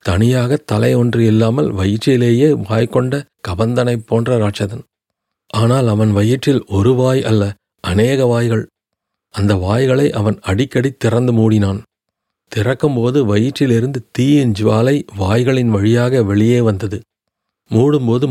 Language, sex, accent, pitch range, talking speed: Tamil, male, native, 105-125 Hz, 105 wpm